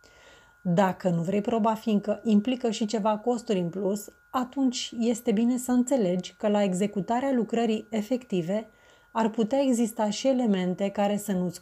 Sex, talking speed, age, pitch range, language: female, 150 wpm, 30-49, 200-260 Hz, Romanian